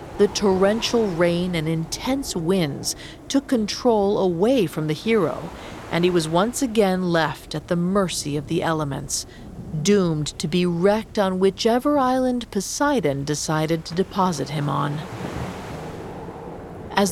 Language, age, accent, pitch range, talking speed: English, 40-59, American, 165-215 Hz, 135 wpm